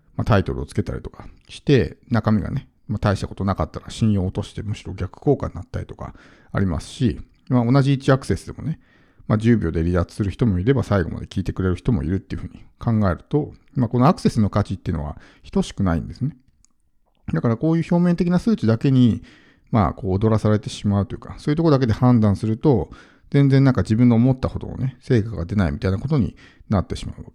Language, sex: Japanese, male